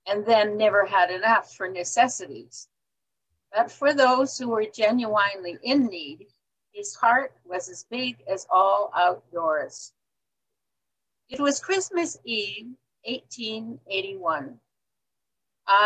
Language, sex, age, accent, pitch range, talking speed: English, female, 60-79, American, 195-250 Hz, 105 wpm